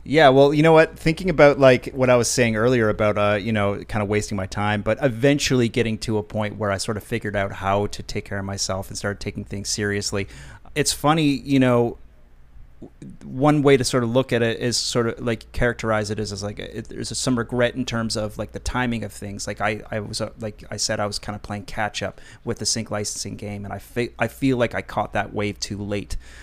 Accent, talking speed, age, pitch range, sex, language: American, 250 wpm, 30-49, 100-120 Hz, male, English